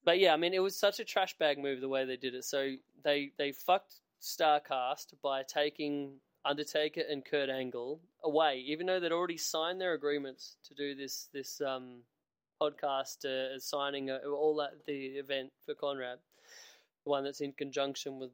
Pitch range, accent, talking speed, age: 140-180 Hz, Australian, 185 wpm, 20-39